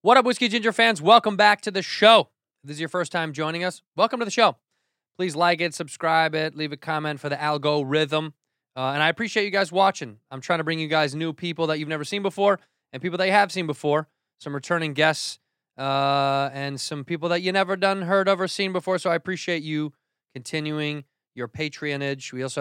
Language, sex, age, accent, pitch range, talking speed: English, male, 20-39, American, 135-190 Hz, 225 wpm